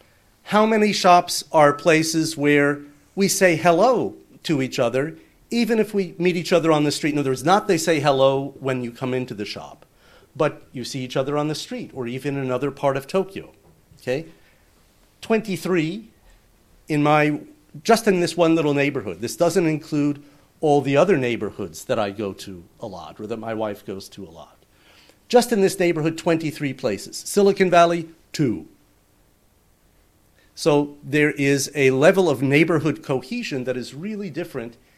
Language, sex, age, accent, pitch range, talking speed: English, male, 50-69, American, 130-170 Hz, 175 wpm